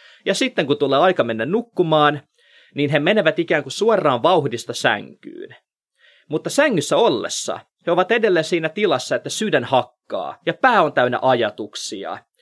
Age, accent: 30-49, native